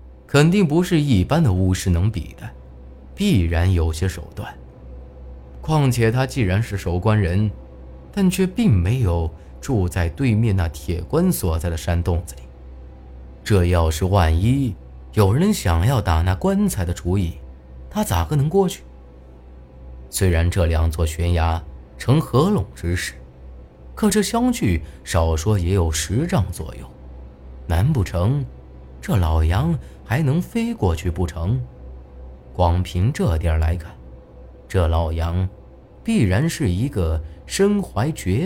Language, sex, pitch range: Chinese, male, 65-105 Hz